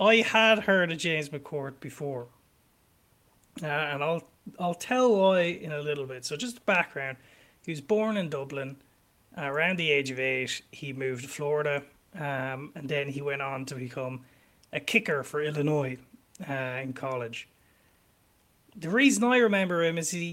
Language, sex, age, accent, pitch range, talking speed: English, male, 30-49, Irish, 135-185 Hz, 170 wpm